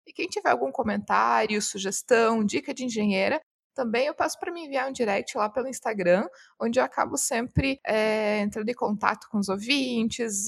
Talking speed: 170 wpm